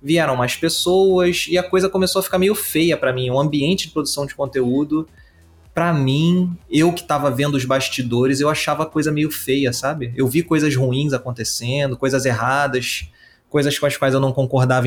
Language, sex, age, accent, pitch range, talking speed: Portuguese, male, 20-39, Brazilian, 135-185 Hz, 195 wpm